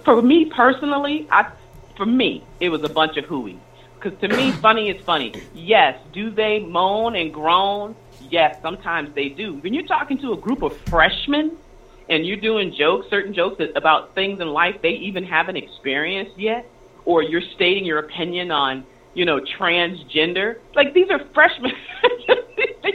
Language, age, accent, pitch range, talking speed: English, 40-59, American, 155-255 Hz, 170 wpm